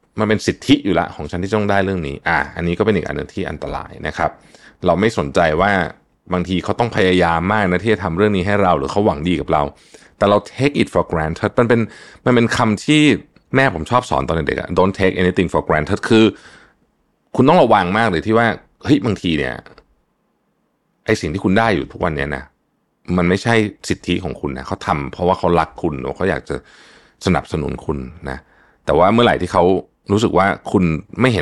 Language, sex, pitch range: Thai, male, 85-115 Hz